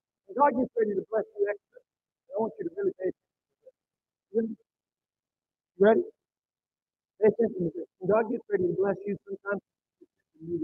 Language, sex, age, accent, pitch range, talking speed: English, male, 50-69, American, 205-300 Hz, 160 wpm